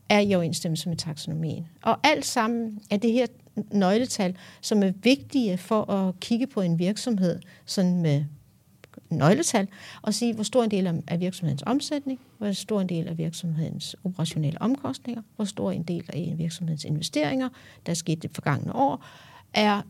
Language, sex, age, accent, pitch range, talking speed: Danish, female, 60-79, native, 165-215 Hz, 165 wpm